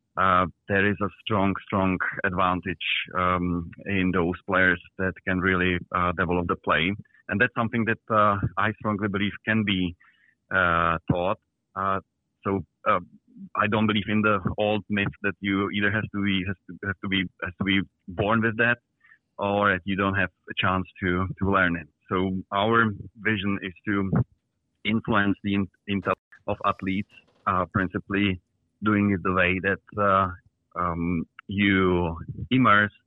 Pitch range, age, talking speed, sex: 90-105 Hz, 30-49, 160 wpm, male